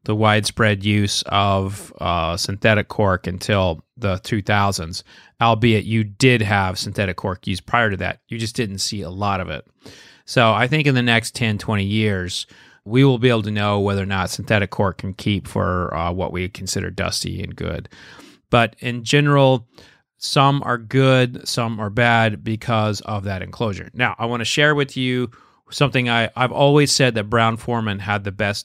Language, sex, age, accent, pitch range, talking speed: English, male, 30-49, American, 100-120 Hz, 180 wpm